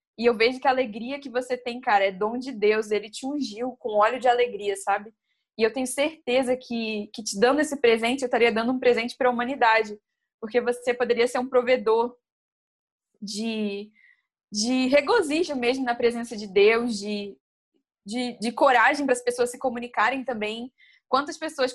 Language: Portuguese